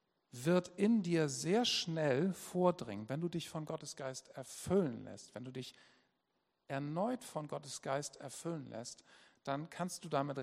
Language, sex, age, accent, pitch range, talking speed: German, male, 50-69, German, 135-190 Hz, 155 wpm